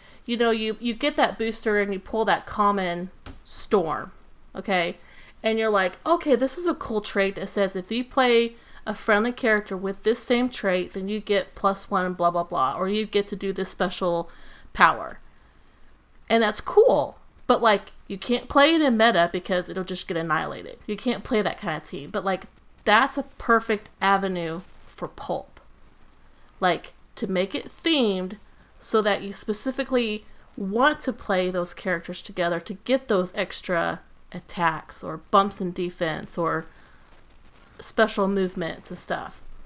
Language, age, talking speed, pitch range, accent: English, 30-49, 170 wpm, 185-225 Hz, American